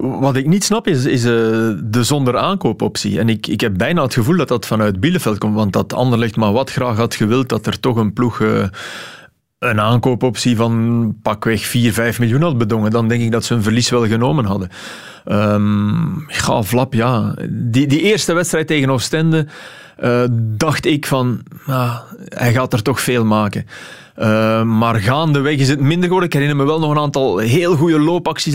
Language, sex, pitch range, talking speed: Dutch, male, 115-150 Hz, 195 wpm